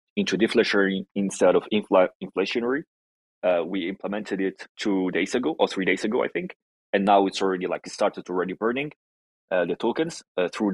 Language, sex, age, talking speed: English, male, 30-49, 185 wpm